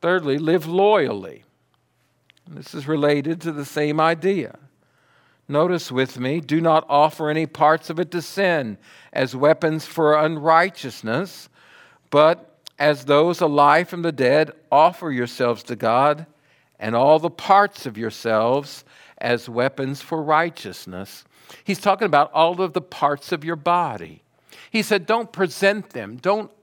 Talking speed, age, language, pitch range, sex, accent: 140 wpm, 50-69, English, 150-205 Hz, male, American